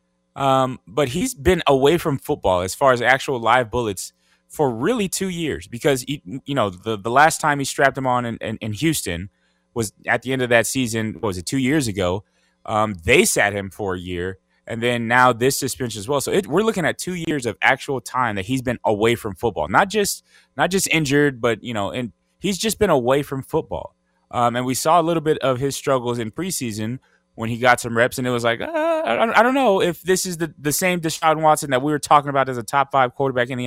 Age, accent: 20-39, American